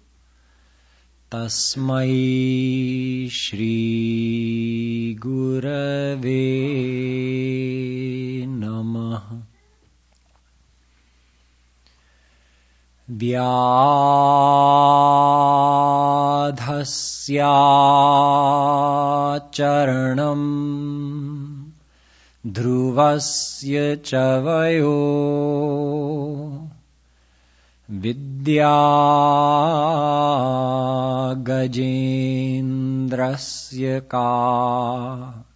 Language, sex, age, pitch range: English, male, 40-59, 120-145 Hz